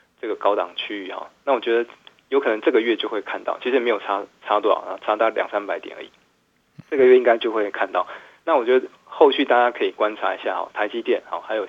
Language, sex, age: Chinese, male, 20-39